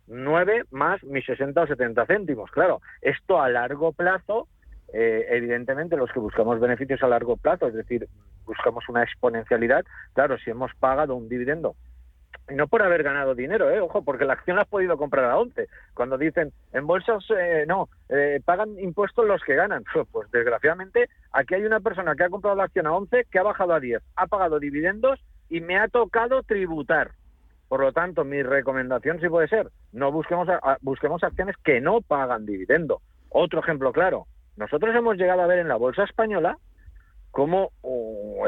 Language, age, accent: Spanish, 50-69, Spanish